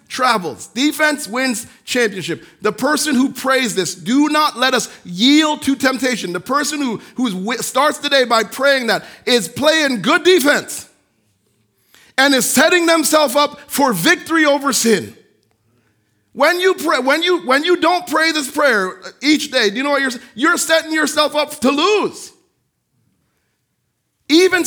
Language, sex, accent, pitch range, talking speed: English, male, American, 210-295 Hz, 155 wpm